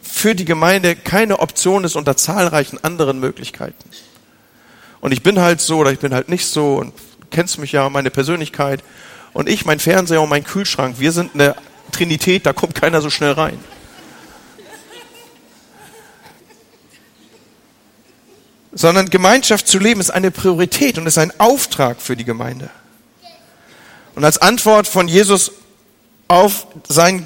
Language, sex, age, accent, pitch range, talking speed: German, male, 40-59, German, 150-185 Hz, 145 wpm